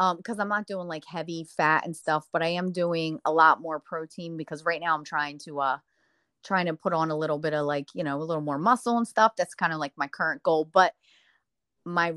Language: English